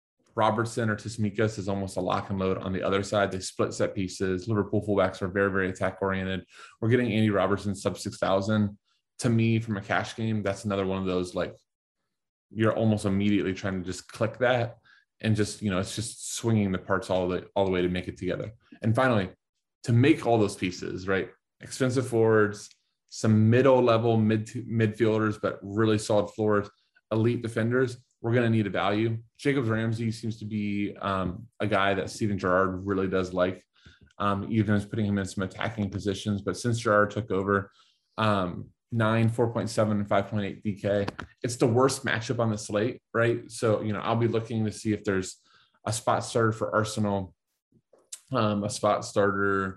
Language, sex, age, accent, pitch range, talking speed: English, male, 20-39, American, 100-115 Hz, 185 wpm